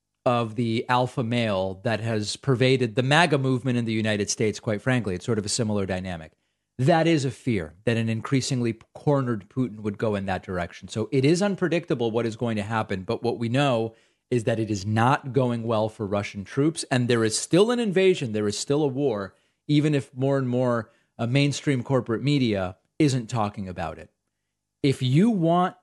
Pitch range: 110-140 Hz